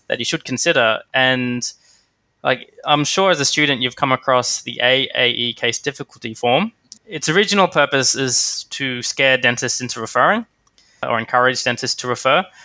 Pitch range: 120-145 Hz